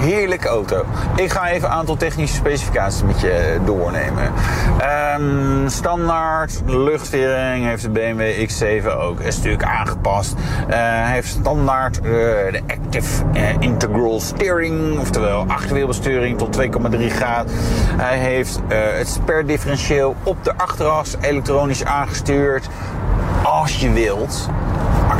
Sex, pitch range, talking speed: male, 100-135 Hz, 125 wpm